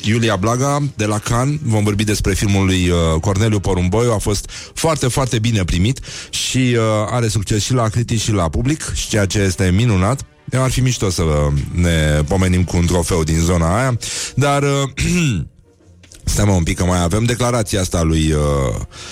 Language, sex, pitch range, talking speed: Romanian, male, 90-130 Hz, 180 wpm